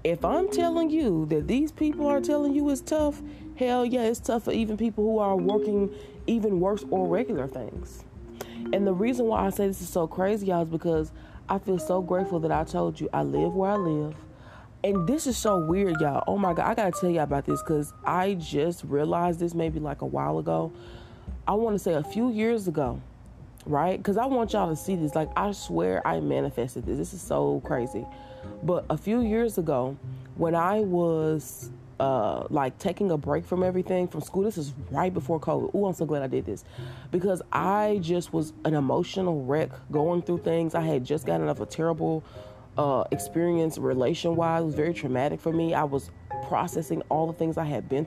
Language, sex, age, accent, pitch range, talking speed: English, female, 20-39, American, 140-200 Hz, 210 wpm